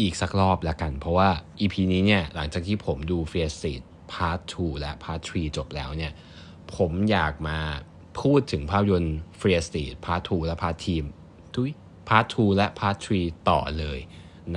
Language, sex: Thai, male